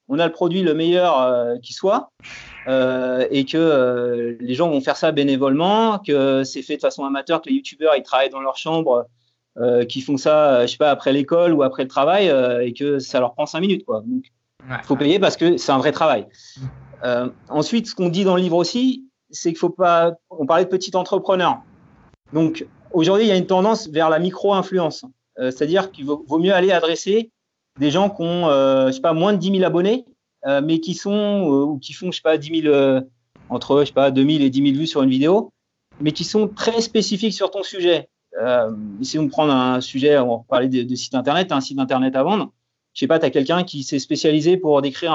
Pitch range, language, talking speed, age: 135-180 Hz, French, 235 wpm, 40-59